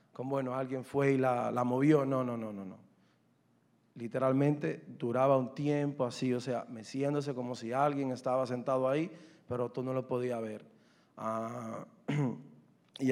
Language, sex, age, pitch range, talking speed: Spanish, male, 30-49, 115-135 Hz, 160 wpm